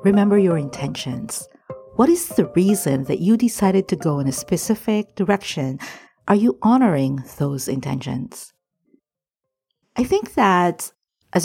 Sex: female